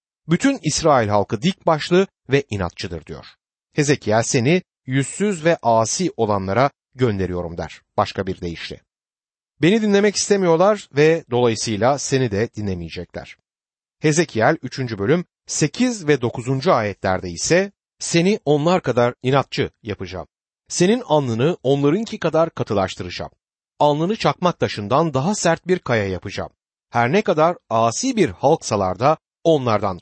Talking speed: 120 wpm